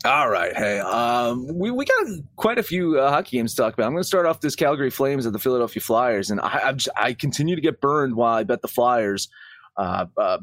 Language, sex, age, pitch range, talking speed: English, male, 30-49, 110-175 Hz, 245 wpm